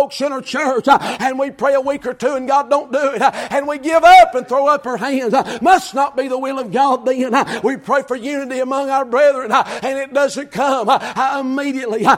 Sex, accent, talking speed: male, American, 215 wpm